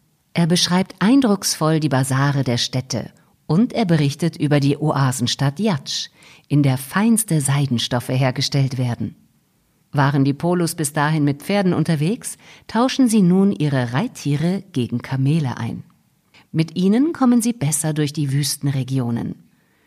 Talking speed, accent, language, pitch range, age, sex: 135 wpm, German, German, 135-180 Hz, 50-69, female